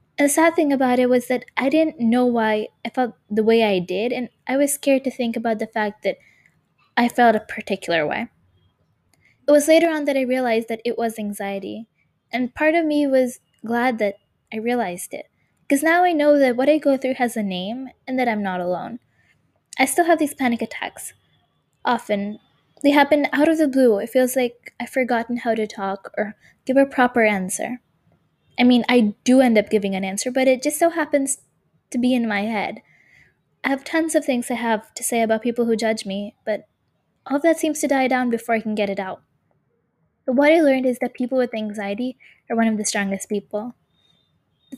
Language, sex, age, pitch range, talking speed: English, female, 10-29, 215-270 Hz, 215 wpm